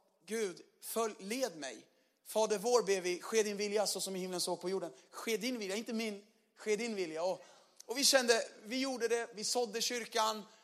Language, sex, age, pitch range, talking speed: Swedish, male, 30-49, 175-225 Hz, 205 wpm